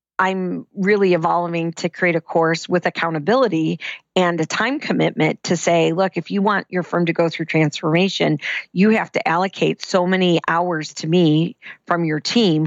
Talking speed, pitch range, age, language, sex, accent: 175 wpm, 165-195 Hz, 40-59, English, female, American